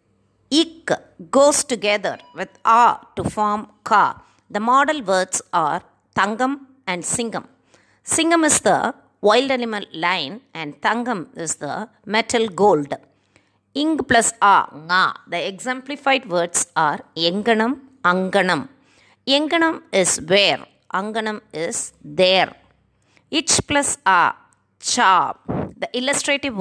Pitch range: 190-265 Hz